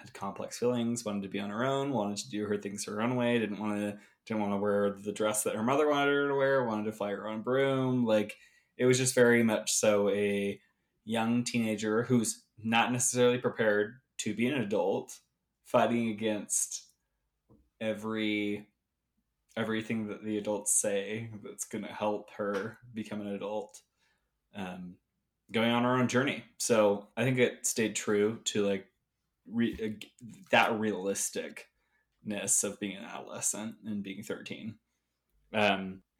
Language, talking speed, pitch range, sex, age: English, 160 wpm, 105-120 Hz, male, 20-39